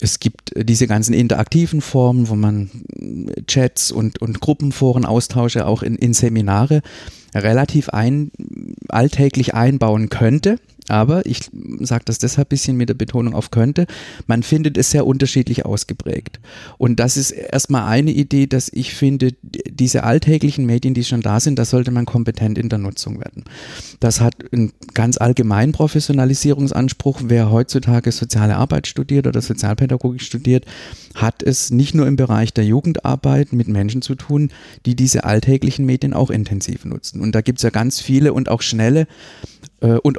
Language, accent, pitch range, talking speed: German, German, 115-135 Hz, 160 wpm